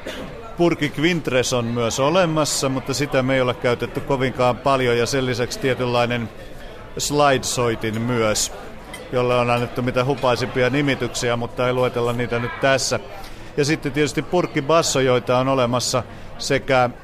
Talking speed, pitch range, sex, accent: 140 wpm, 120-145 Hz, male, native